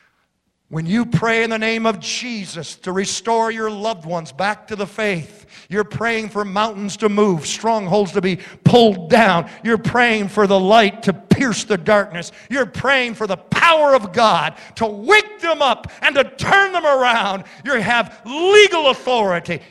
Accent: American